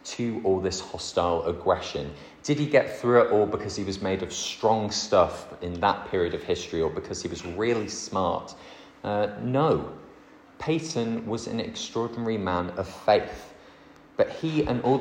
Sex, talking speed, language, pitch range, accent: male, 170 wpm, English, 90-120 Hz, British